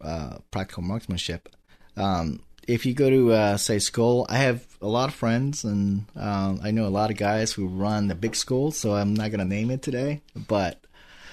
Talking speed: 205 wpm